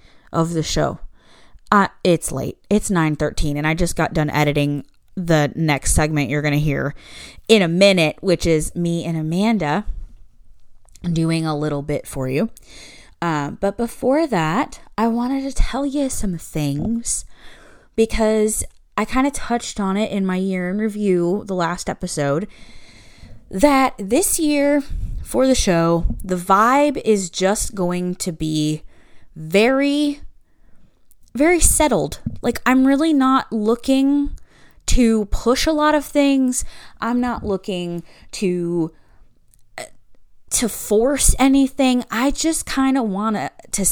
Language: English